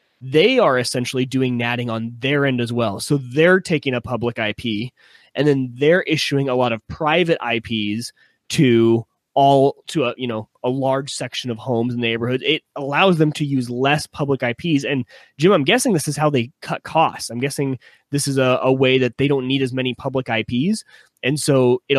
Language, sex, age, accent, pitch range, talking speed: English, male, 20-39, American, 120-150 Hz, 200 wpm